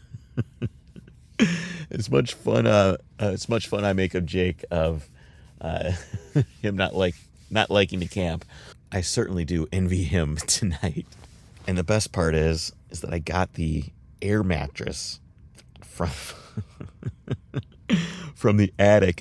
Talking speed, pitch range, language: 135 wpm, 80-100 Hz, English